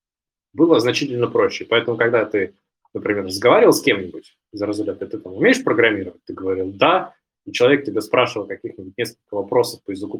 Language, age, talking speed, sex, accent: Russian, 20-39, 165 wpm, male, native